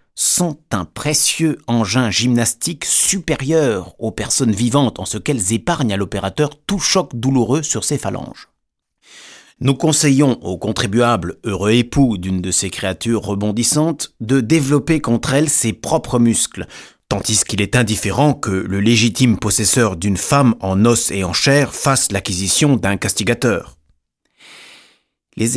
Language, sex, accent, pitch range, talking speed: French, male, French, 100-135 Hz, 140 wpm